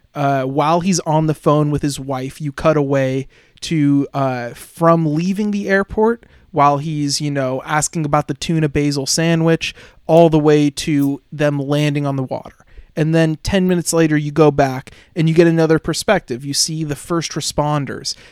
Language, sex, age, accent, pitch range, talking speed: English, male, 20-39, American, 140-165 Hz, 180 wpm